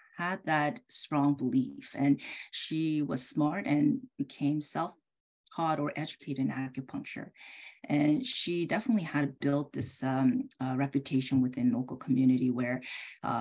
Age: 30-49